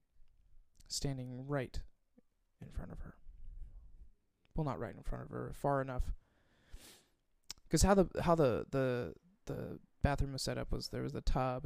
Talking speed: 160 wpm